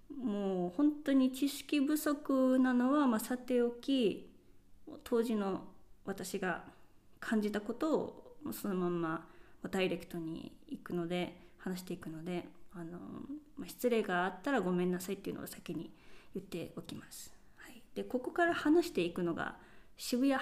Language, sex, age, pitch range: Japanese, female, 20-39, 185-270 Hz